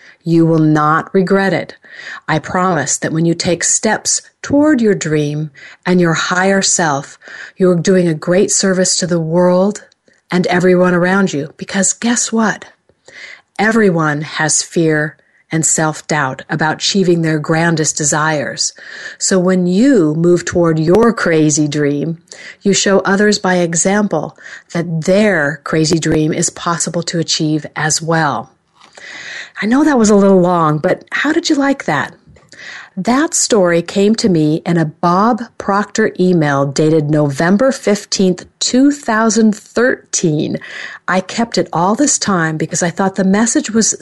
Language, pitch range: English, 160-205 Hz